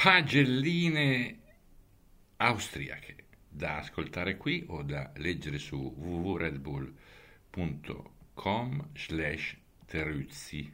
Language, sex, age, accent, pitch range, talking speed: Italian, male, 50-69, native, 75-95 Hz, 55 wpm